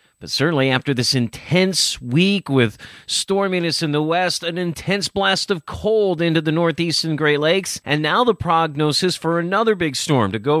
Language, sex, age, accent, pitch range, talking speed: English, male, 40-59, American, 130-175 Hz, 175 wpm